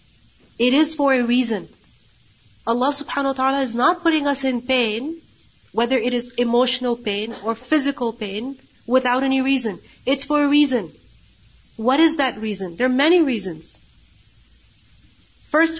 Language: English